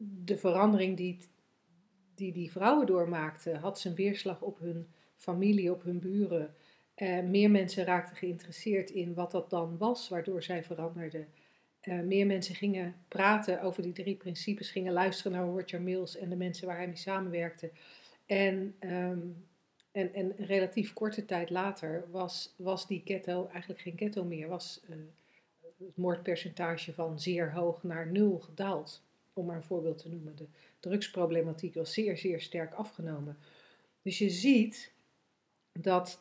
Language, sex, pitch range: Dutch, female, 170-200 Hz